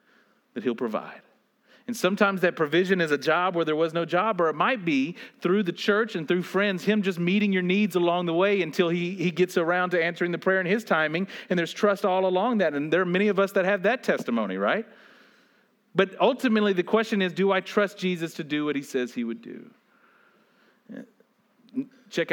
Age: 40-59